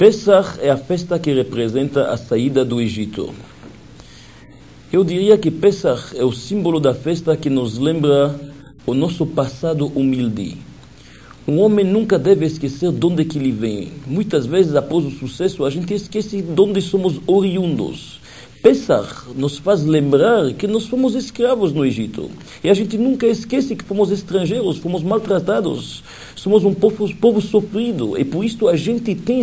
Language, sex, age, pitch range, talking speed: Portuguese, male, 50-69, 145-220 Hz, 160 wpm